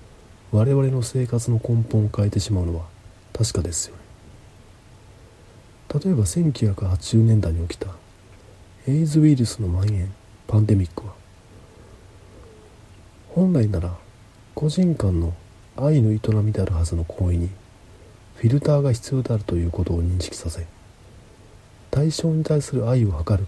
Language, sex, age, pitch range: Japanese, male, 40-59, 95-115 Hz